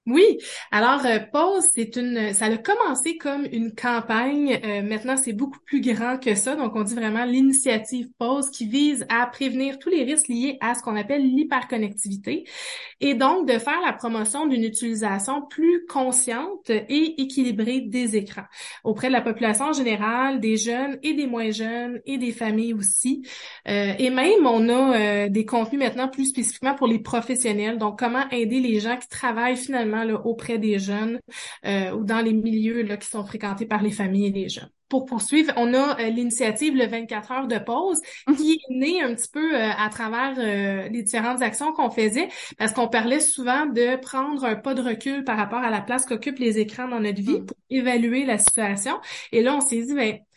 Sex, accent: female, Canadian